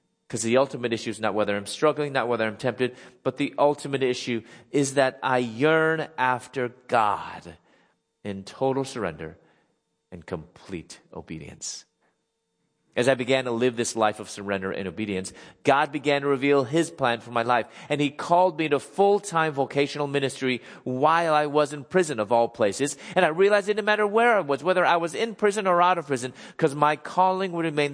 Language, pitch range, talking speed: English, 110-155 Hz, 190 wpm